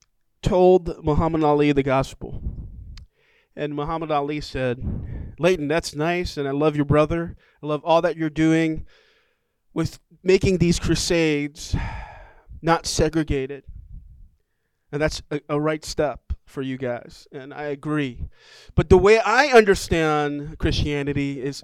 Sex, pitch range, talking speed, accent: male, 125-160 Hz, 135 wpm, American